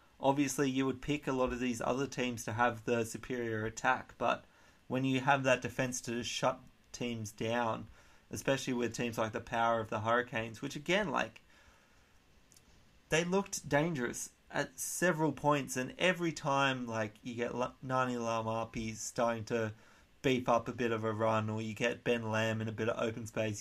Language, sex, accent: English, male, Australian